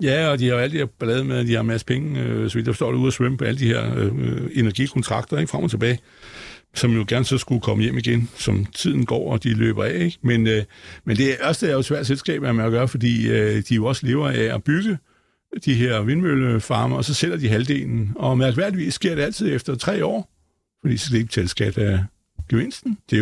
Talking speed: 245 wpm